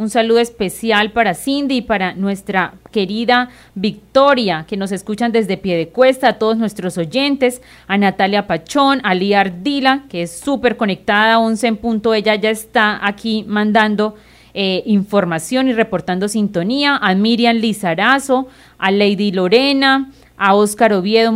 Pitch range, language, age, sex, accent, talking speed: 200-255 Hz, Spanish, 30-49, female, Colombian, 145 wpm